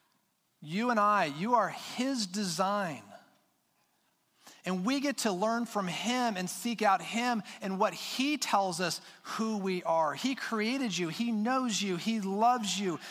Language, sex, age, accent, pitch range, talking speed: English, male, 40-59, American, 175-230 Hz, 160 wpm